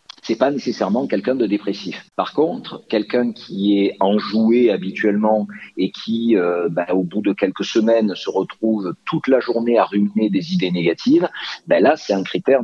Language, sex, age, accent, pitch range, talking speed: French, male, 50-69, French, 95-155 Hz, 180 wpm